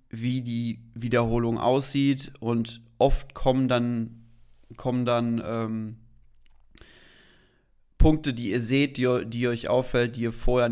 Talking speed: 120 wpm